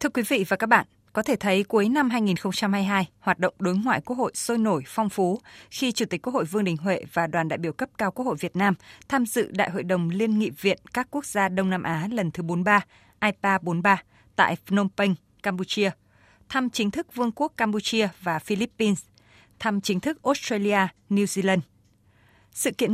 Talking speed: 205 wpm